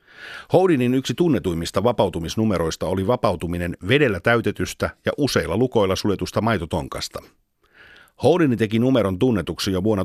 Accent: native